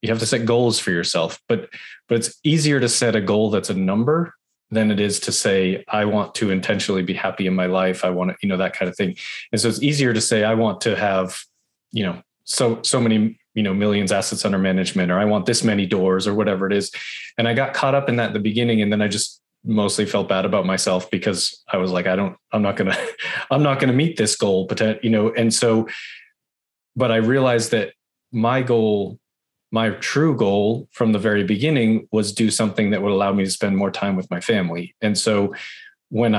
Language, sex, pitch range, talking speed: English, male, 100-115 Hz, 235 wpm